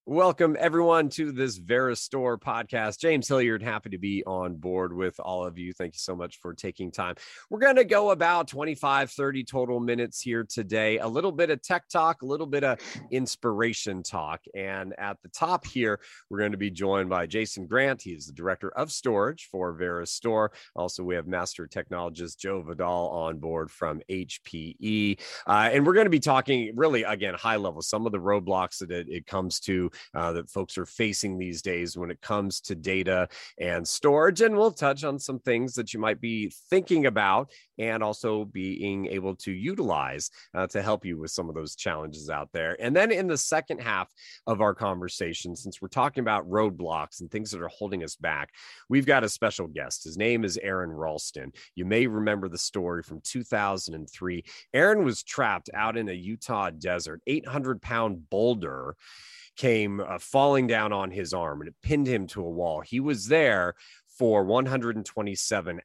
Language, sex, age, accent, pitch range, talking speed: English, male, 30-49, American, 90-125 Hz, 190 wpm